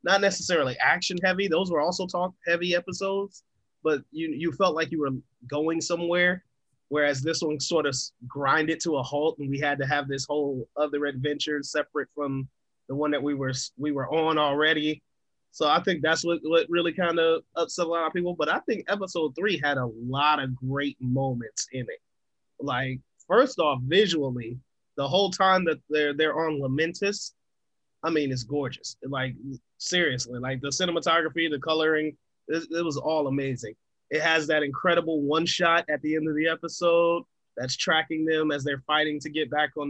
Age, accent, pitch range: 30-49, American, 140-165 Hz